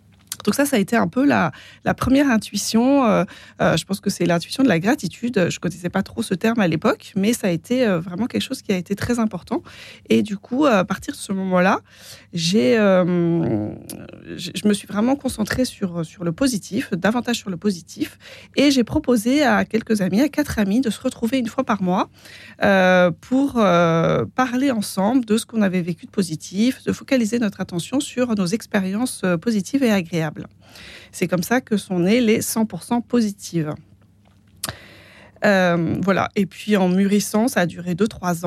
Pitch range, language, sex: 170-225 Hz, French, female